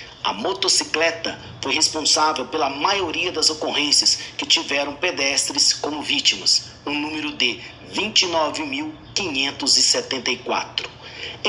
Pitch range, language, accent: 140-170 Hz, Portuguese, Brazilian